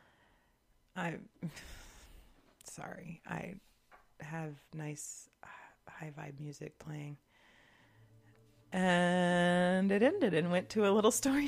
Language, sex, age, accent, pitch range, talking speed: English, female, 30-49, American, 115-175 Hz, 95 wpm